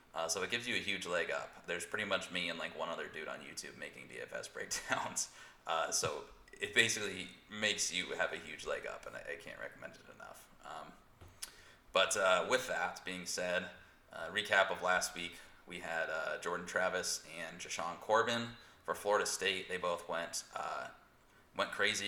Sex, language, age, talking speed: male, English, 20-39, 190 wpm